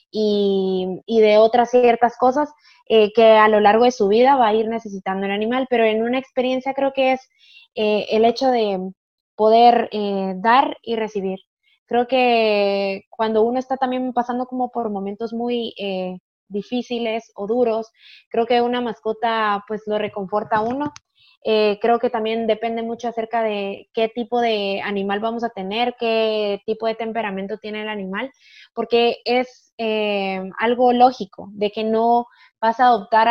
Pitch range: 210-245 Hz